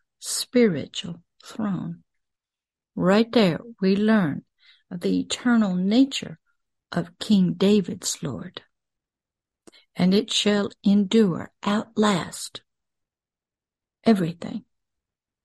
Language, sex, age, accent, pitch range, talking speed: English, female, 60-79, American, 190-240 Hz, 75 wpm